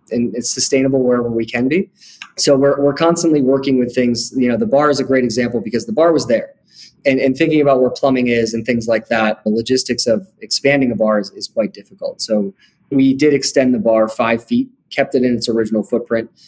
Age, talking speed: 20-39, 225 wpm